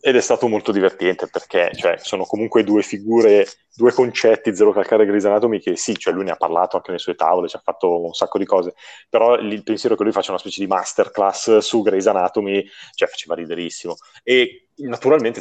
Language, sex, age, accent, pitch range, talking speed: Italian, male, 30-49, native, 95-135 Hz, 200 wpm